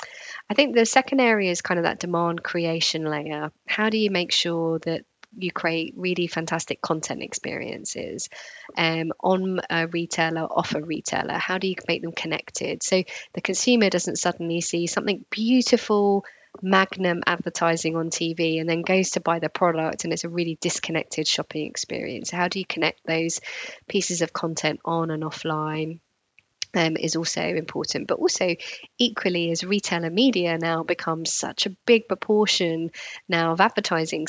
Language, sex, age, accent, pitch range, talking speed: English, female, 20-39, British, 165-190 Hz, 165 wpm